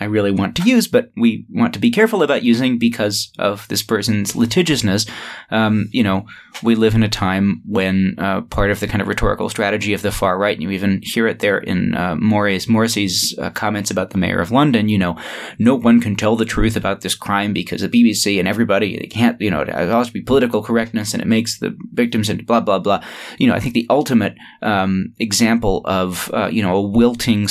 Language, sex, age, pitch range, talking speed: English, male, 20-39, 95-115 Hz, 225 wpm